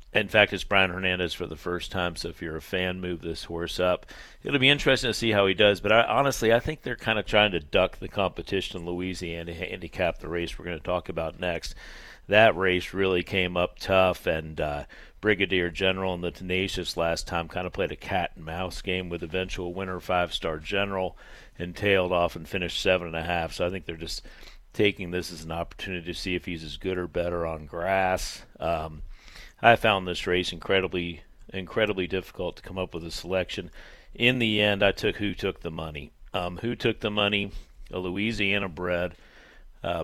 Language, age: English, 50-69